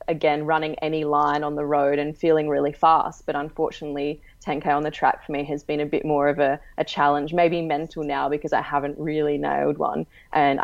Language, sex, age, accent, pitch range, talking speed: English, female, 20-39, Australian, 145-155 Hz, 215 wpm